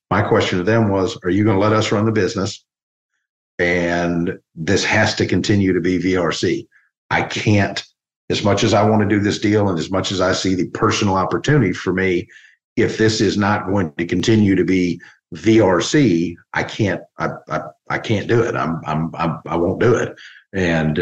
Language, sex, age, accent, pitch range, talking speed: English, male, 50-69, American, 90-110 Hz, 200 wpm